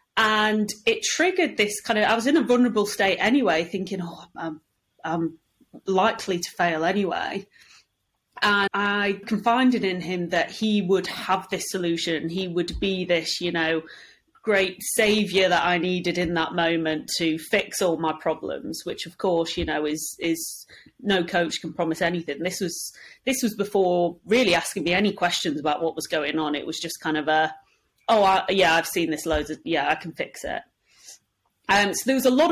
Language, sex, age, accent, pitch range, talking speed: English, female, 30-49, British, 165-210 Hz, 190 wpm